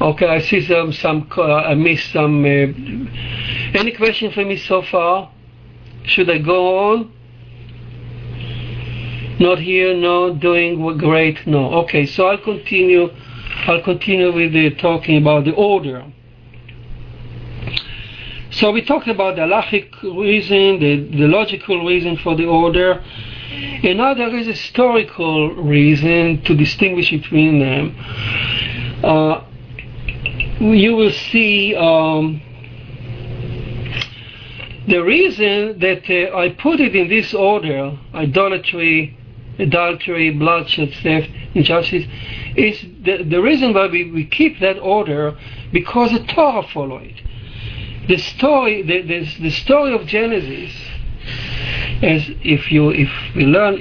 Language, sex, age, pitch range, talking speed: English, male, 50-69, 125-185 Hz, 125 wpm